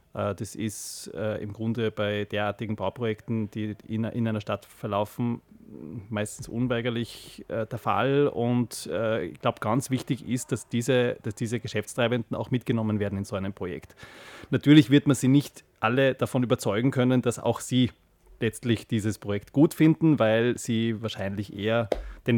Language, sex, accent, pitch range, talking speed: German, male, Austrian, 110-135 Hz, 150 wpm